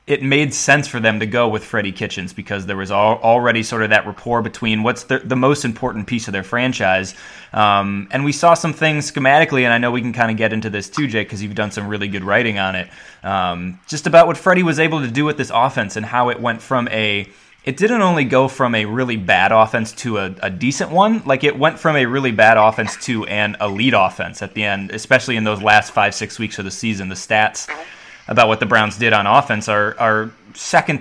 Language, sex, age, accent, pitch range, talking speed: English, male, 20-39, American, 105-135 Hz, 240 wpm